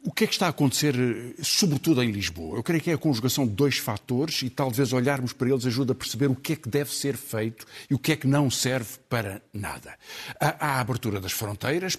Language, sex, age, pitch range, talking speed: Portuguese, male, 50-69, 110-145 Hz, 240 wpm